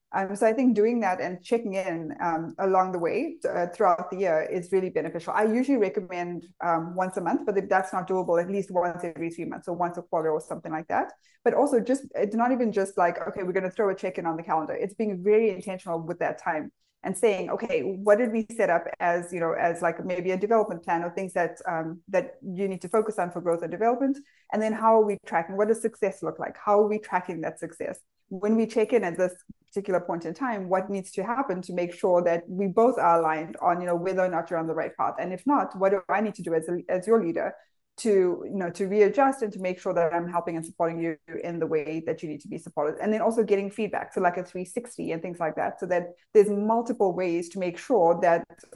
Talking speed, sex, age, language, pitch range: 260 wpm, female, 20-39, English, 175-215 Hz